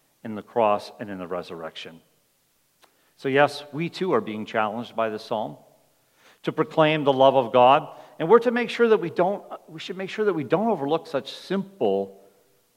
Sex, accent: male, American